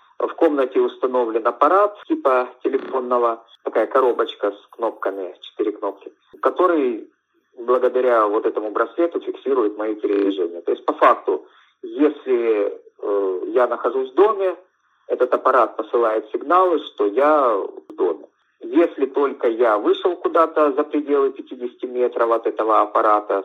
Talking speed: 130 wpm